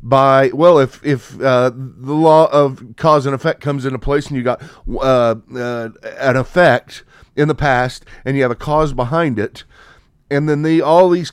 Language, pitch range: English, 125-155 Hz